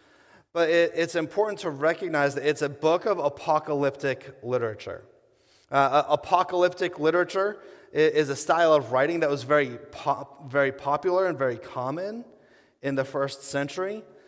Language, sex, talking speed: English, male, 140 wpm